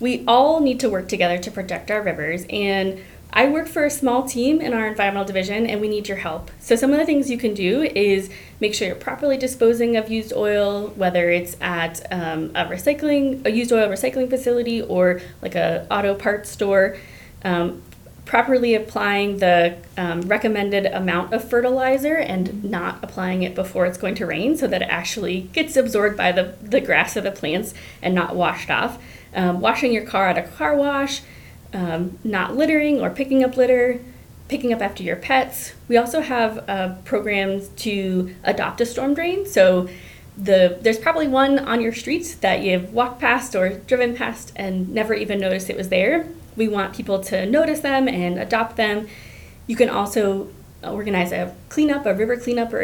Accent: American